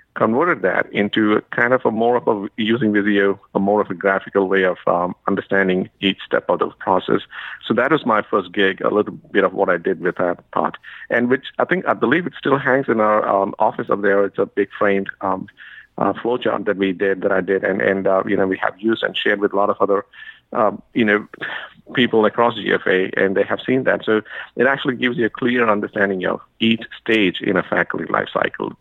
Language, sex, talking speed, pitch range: English, male, 235 wpm, 100-115 Hz